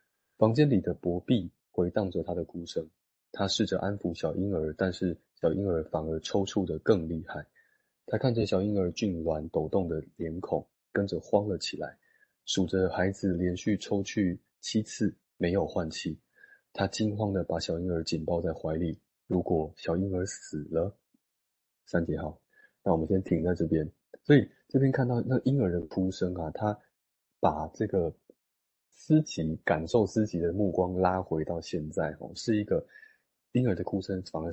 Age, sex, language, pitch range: 20-39, male, Chinese, 85-105 Hz